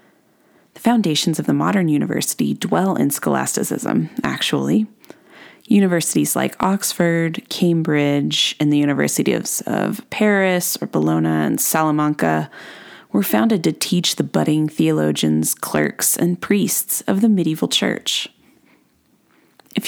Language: English